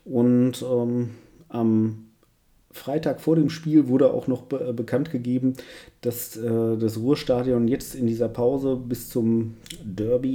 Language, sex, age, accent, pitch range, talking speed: German, male, 40-59, German, 115-130 Hz, 135 wpm